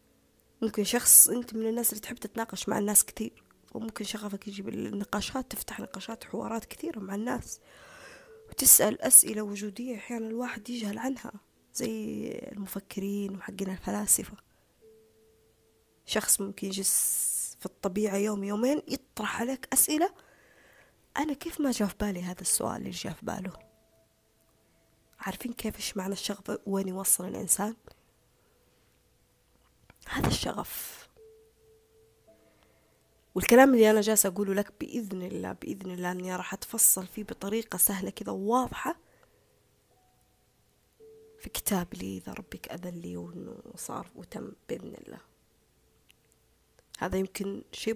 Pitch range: 185-230 Hz